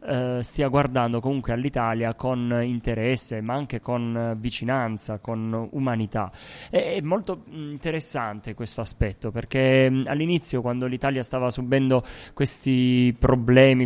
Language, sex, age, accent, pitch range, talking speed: Italian, male, 20-39, native, 110-130 Hz, 110 wpm